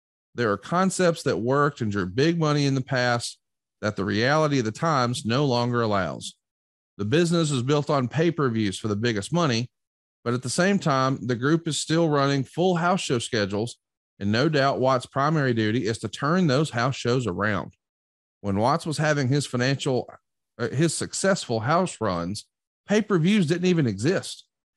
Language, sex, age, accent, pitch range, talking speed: English, male, 40-59, American, 120-170 Hz, 175 wpm